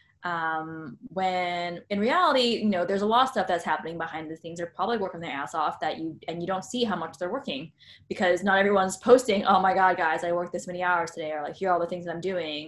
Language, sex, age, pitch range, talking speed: English, female, 10-29, 170-205 Hz, 265 wpm